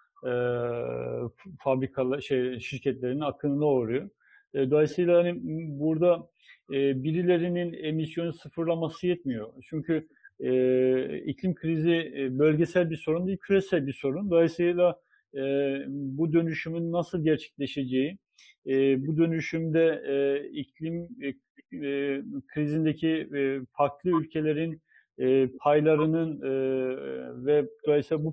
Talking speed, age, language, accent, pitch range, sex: 95 wpm, 50-69, Turkish, native, 135-165 Hz, male